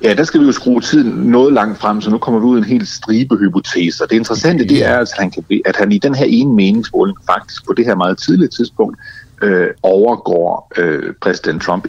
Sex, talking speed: male, 225 wpm